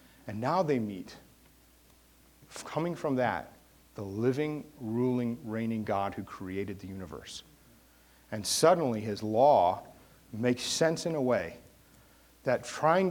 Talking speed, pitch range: 125 wpm, 105-140 Hz